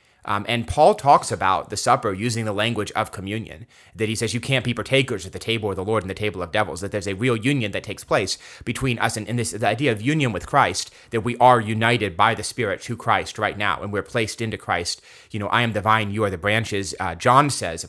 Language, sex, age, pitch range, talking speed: English, male, 30-49, 100-125 Hz, 260 wpm